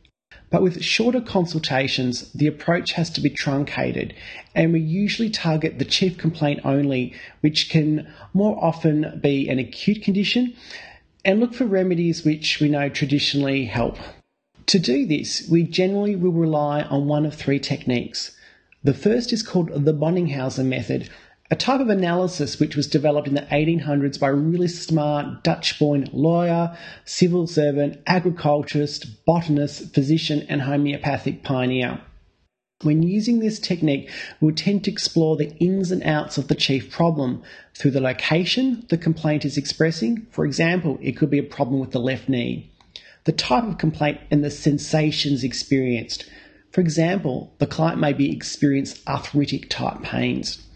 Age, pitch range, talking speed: 30-49, 140-175 Hz, 155 wpm